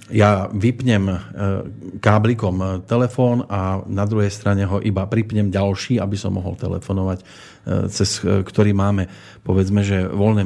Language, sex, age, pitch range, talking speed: Slovak, male, 40-59, 100-125 Hz, 125 wpm